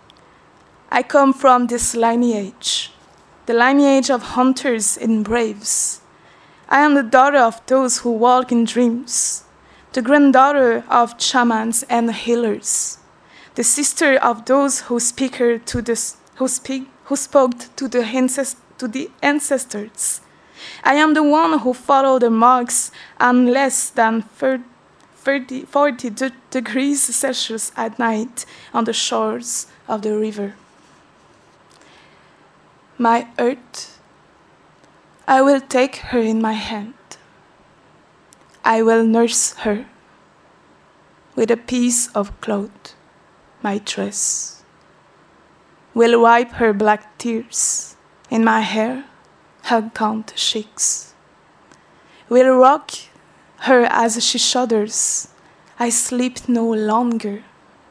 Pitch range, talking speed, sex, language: 225-265 Hz, 105 wpm, female, English